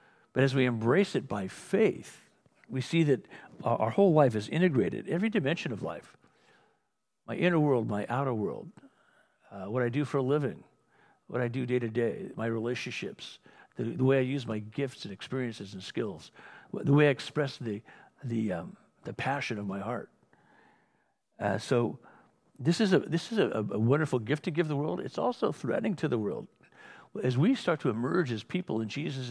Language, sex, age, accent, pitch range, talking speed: English, male, 60-79, American, 115-150 Hz, 190 wpm